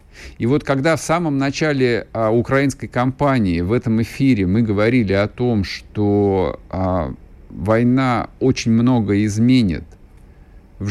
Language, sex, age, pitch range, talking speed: Russian, male, 50-69, 90-130 Hz, 125 wpm